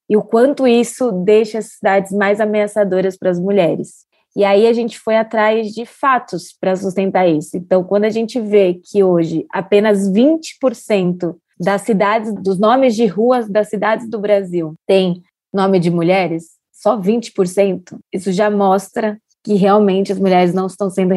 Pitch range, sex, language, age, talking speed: 195-230 Hz, female, Portuguese, 20-39, 165 wpm